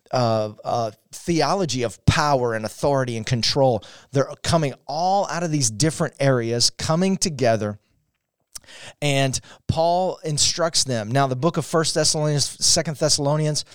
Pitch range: 125-160 Hz